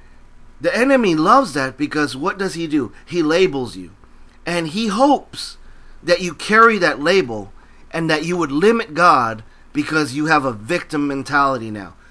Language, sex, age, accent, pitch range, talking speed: French, male, 40-59, American, 125-180 Hz, 165 wpm